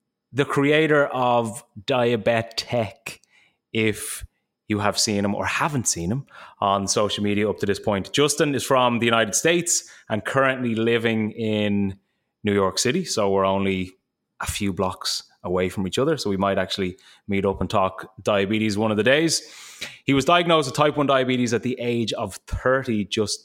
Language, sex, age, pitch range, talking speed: English, male, 20-39, 100-130 Hz, 180 wpm